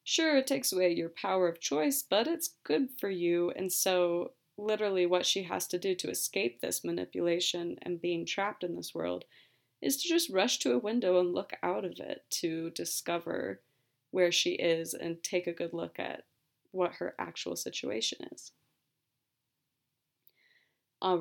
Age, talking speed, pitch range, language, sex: 20-39, 170 wpm, 160-200 Hz, English, female